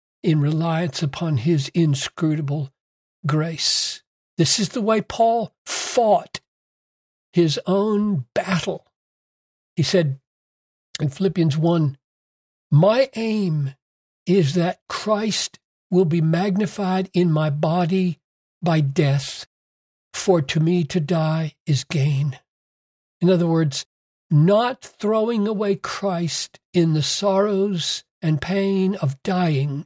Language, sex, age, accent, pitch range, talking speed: English, male, 60-79, American, 140-185 Hz, 110 wpm